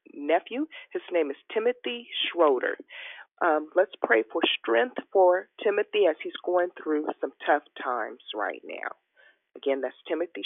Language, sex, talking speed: English, female, 145 wpm